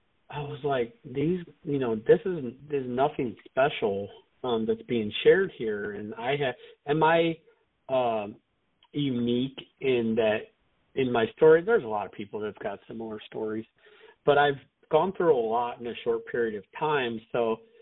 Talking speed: 170 wpm